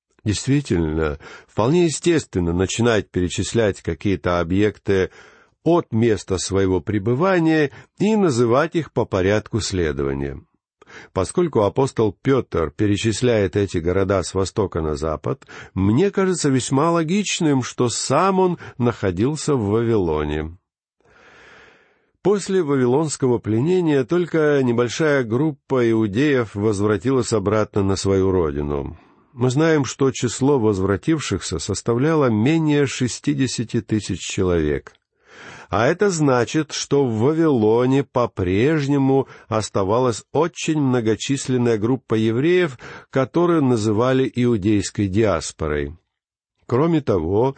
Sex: male